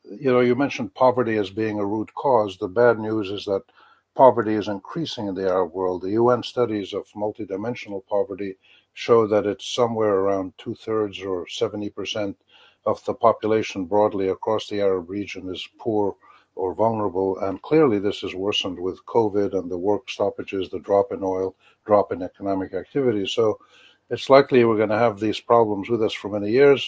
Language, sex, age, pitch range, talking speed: English, male, 60-79, 100-120 Hz, 180 wpm